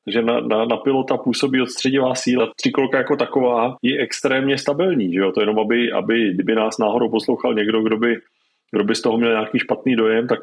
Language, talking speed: Czech, 205 wpm